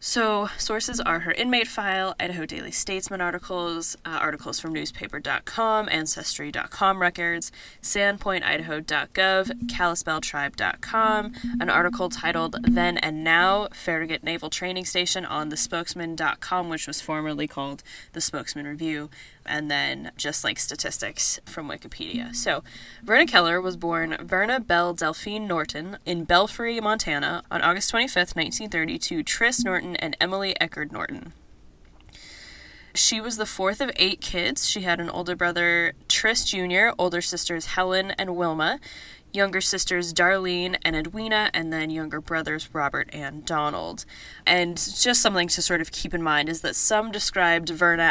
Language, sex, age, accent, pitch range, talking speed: English, female, 10-29, American, 160-195 Hz, 140 wpm